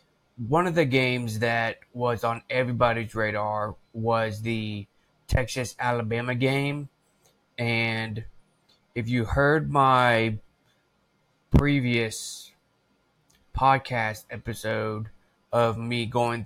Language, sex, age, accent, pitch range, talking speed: English, male, 20-39, American, 110-130 Hz, 90 wpm